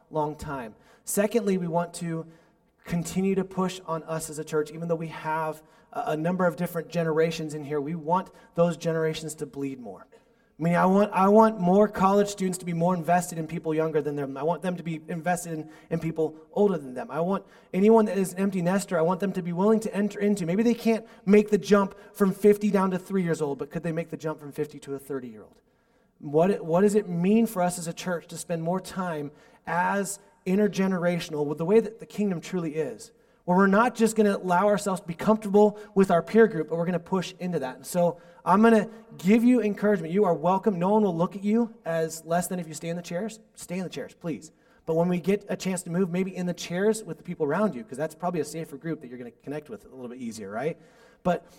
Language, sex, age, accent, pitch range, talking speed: English, male, 30-49, American, 165-210 Hz, 250 wpm